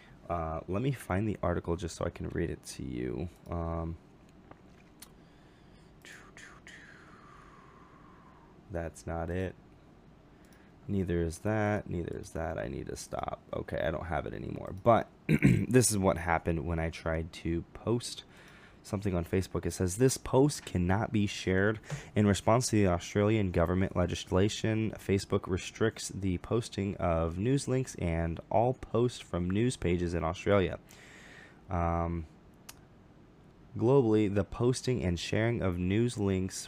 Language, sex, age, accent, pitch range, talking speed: English, male, 20-39, American, 85-110 Hz, 140 wpm